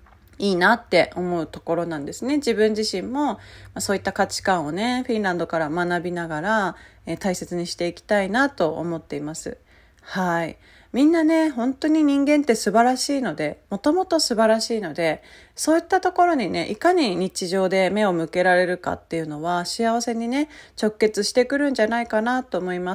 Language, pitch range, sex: Japanese, 180-255 Hz, female